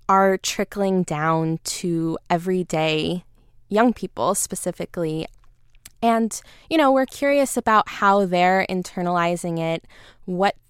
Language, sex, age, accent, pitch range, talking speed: English, female, 10-29, American, 170-195 Hz, 105 wpm